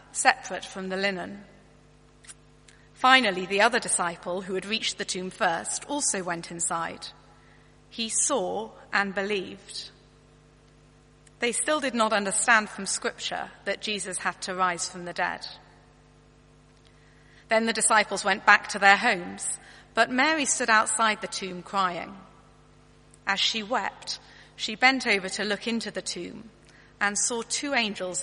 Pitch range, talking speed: 180-225 Hz, 140 wpm